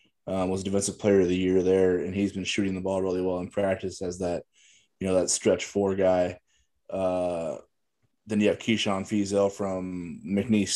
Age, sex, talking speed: 20-39, male, 190 wpm